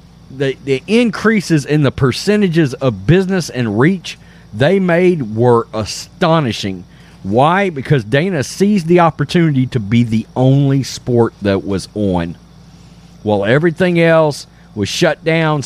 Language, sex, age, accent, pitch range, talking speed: English, male, 40-59, American, 115-165 Hz, 130 wpm